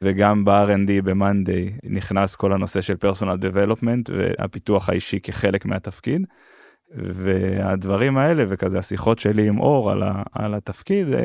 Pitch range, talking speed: 100-125 Hz, 115 wpm